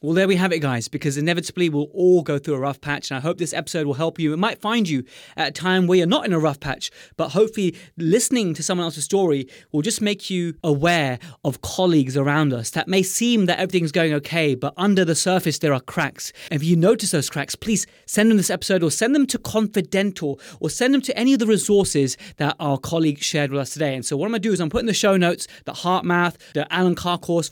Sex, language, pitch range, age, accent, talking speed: male, English, 145-185 Hz, 20-39, British, 255 wpm